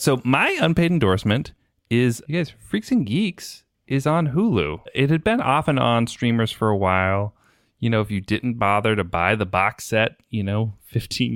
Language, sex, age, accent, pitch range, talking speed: English, male, 30-49, American, 95-125 Hz, 195 wpm